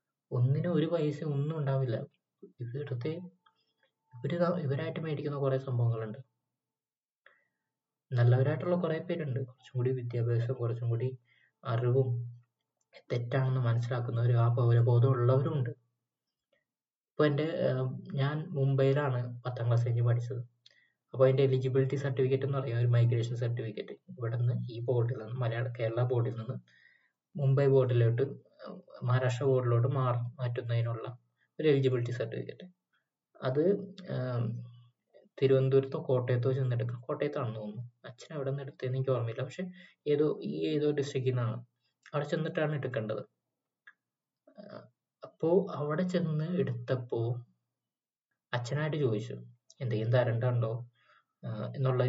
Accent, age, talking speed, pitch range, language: native, 20-39, 100 wpm, 120-145 Hz, Malayalam